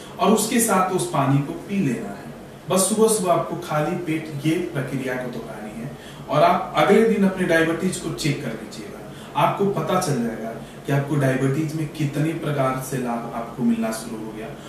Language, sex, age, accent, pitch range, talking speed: Hindi, male, 40-59, native, 135-190 Hz, 180 wpm